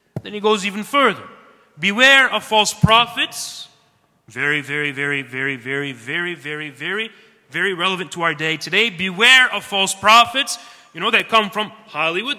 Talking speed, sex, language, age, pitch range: 160 wpm, male, English, 30-49, 190-245 Hz